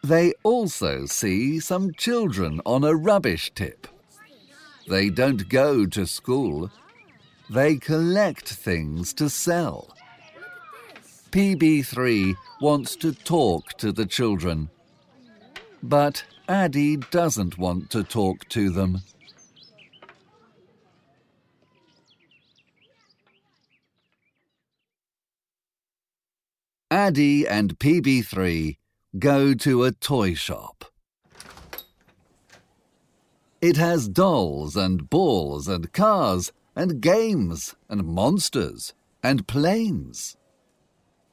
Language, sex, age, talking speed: Slovak, male, 50-69, 80 wpm